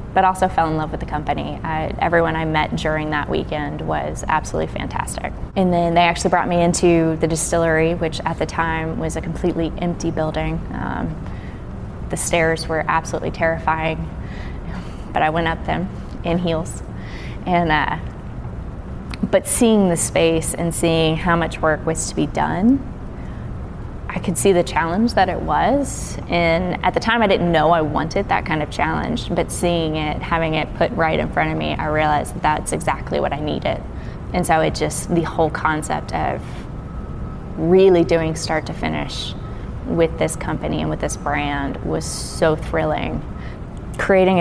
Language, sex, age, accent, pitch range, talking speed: English, female, 20-39, American, 155-170 Hz, 175 wpm